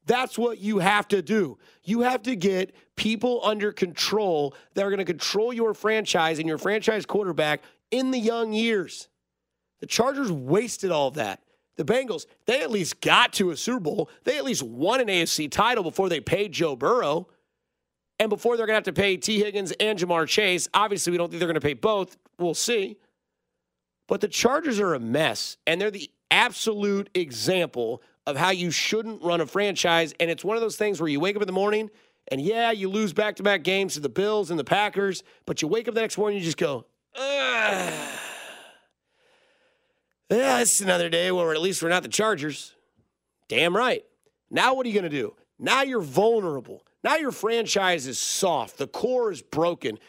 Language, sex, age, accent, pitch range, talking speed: English, male, 30-49, American, 175-235 Hz, 200 wpm